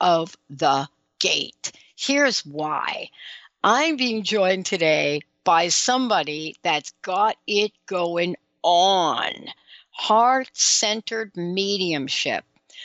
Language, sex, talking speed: English, female, 90 wpm